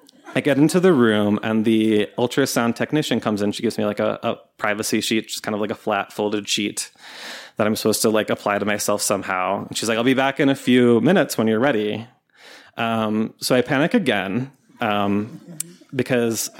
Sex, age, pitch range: male, 20-39, 110-150 Hz